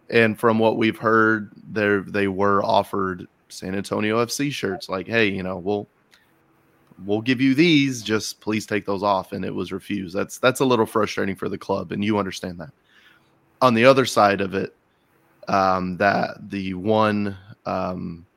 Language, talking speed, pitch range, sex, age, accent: English, 175 wpm, 100-120 Hz, male, 20-39, American